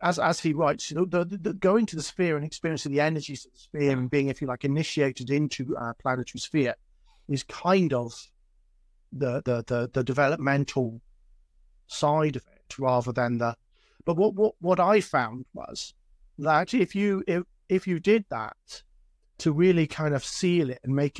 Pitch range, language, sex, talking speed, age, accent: 125-165 Hz, English, male, 190 wpm, 40-59, British